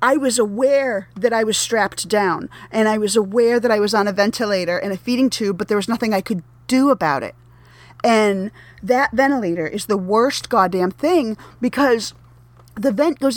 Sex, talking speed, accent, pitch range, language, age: female, 195 wpm, American, 195-270 Hz, English, 30-49